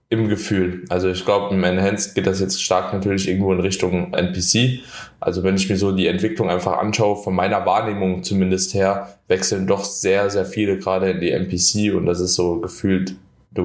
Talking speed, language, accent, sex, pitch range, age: 200 wpm, German, German, male, 95-105 Hz, 20-39